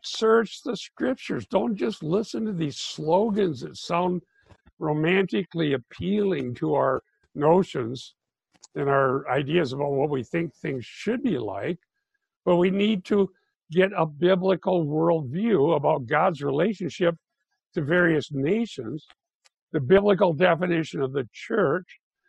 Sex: male